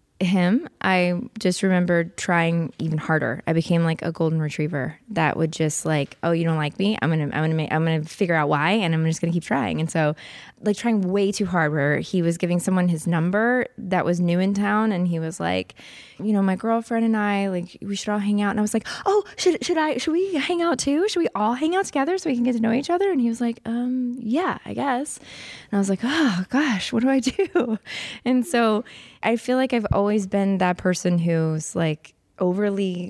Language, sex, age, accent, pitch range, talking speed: English, female, 20-39, American, 165-230 Hz, 240 wpm